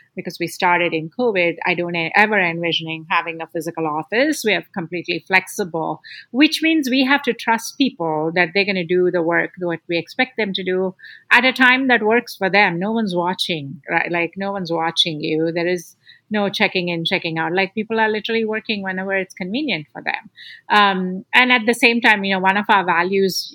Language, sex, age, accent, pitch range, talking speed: English, female, 50-69, Indian, 175-230 Hz, 210 wpm